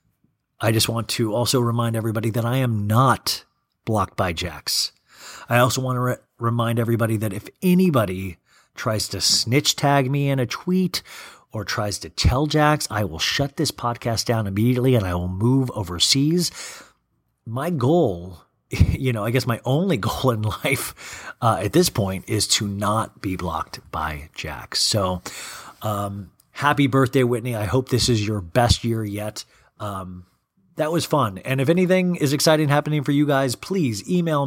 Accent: American